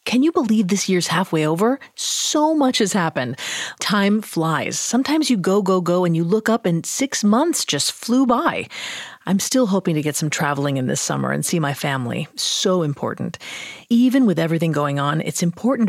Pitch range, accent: 155-220 Hz, American